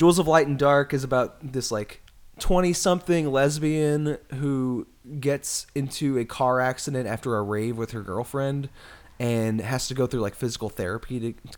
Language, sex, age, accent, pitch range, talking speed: English, male, 20-39, American, 105-130 Hz, 170 wpm